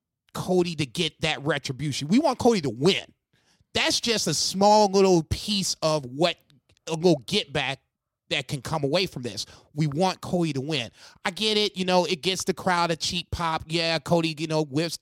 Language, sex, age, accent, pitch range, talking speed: English, male, 30-49, American, 145-185 Hz, 200 wpm